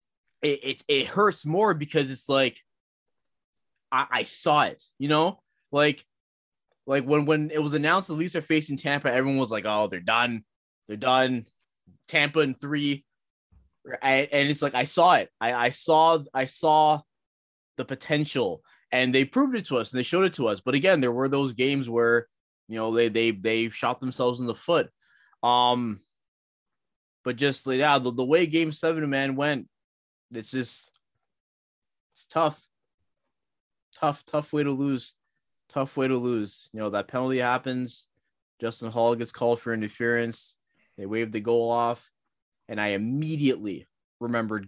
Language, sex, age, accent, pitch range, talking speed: English, male, 20-39, American, 110-145 Hz, 170 wpm